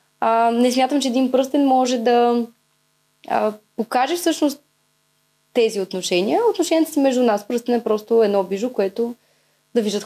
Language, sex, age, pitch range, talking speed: Bulgarian, female, 20-39, 210-260 Hz, 150 wpm